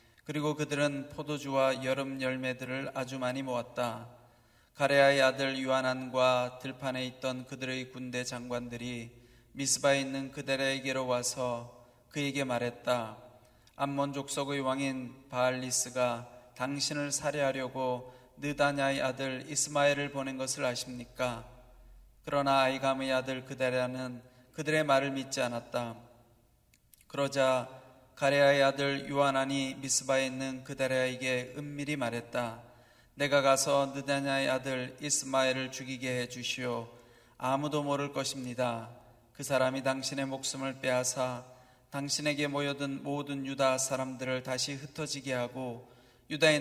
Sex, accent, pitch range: male, native, 125-135 Hz